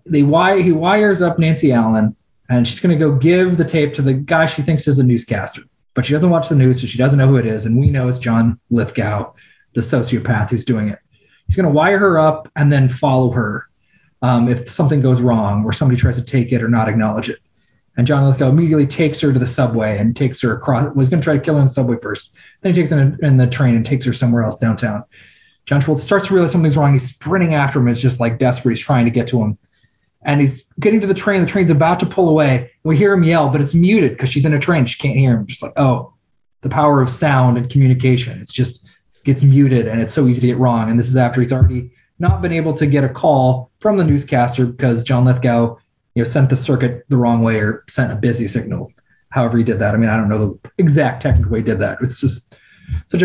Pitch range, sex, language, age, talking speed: 120-150 Hz, male, English, 30-49, 255 wpm